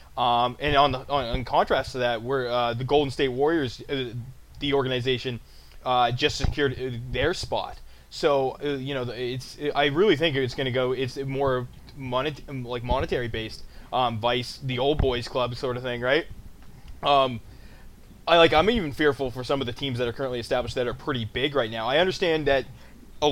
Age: 20-39